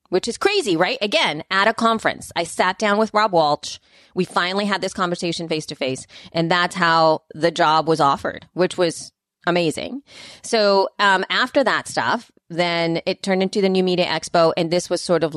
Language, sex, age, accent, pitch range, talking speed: English, female, 30-49, American, 165-225 Hz, 195 wpm